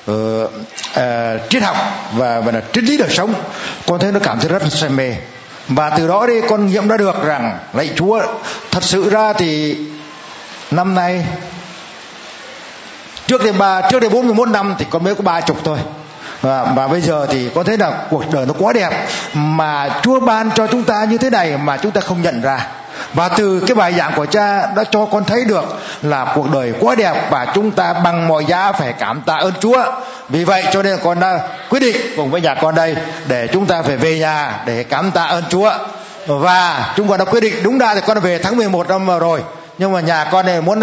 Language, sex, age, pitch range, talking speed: Vietnamese, male, 60-79, 155-205 Hz, 225 wpm